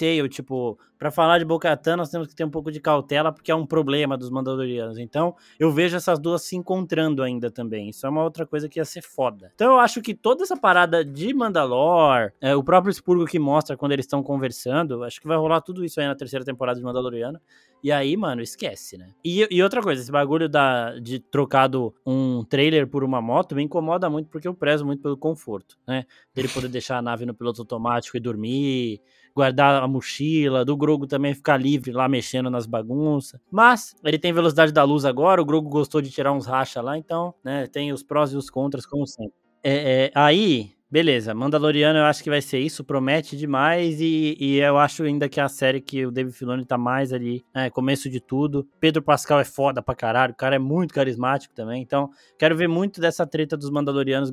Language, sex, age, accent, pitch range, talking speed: Portuguese, male, 20-39, Brazilian, 130-160 Hz, 220 wpm